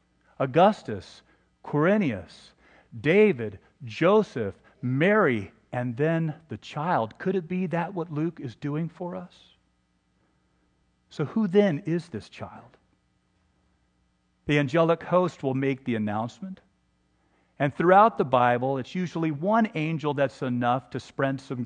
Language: English